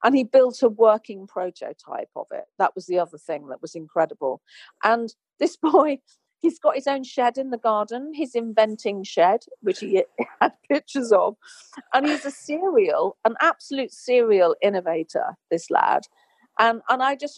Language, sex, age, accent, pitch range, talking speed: English, female, 40-59, British, 195-280 Hz, 170 wpm